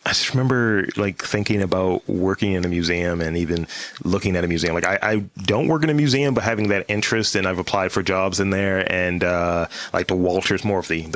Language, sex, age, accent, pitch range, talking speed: English, male, 30-49, American, 95-130 Hz, 225 wpm